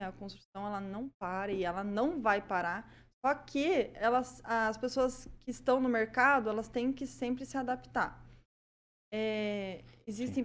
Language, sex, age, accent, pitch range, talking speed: Portuguese, female, 20-39, Brazilian, 205-255 Hz, 155 wpm